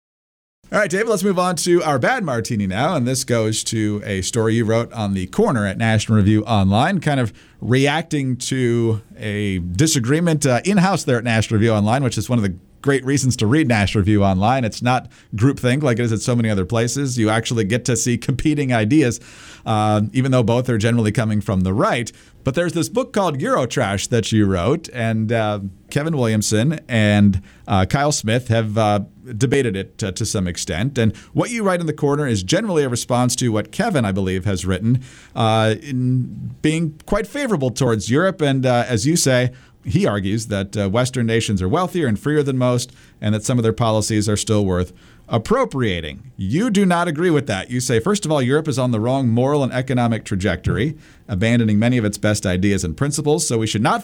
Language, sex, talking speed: English, male, 210 wpm